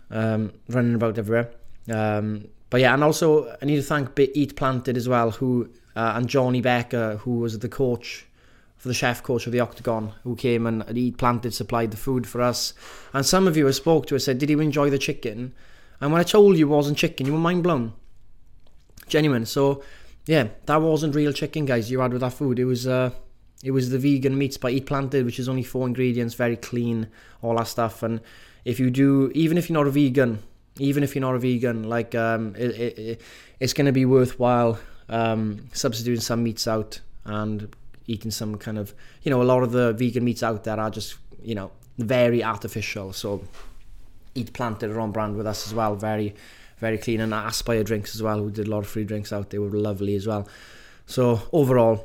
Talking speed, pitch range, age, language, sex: 220 wpm, 110-130 Hz, 20-39, English, male